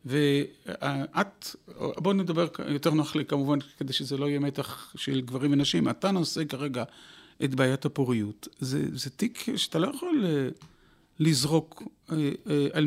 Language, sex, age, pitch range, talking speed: Hebrew, male, 40-59, 135-175 Hz, 135 wpm